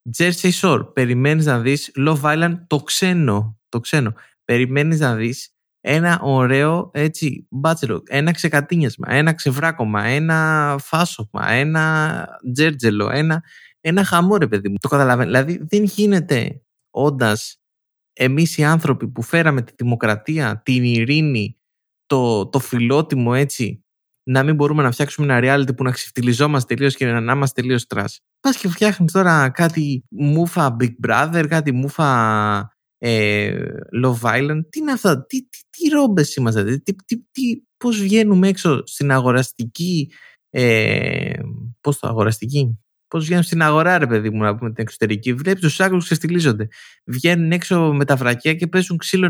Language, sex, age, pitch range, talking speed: Greek, male, 20-39, 125-165 Hz, 150 wpm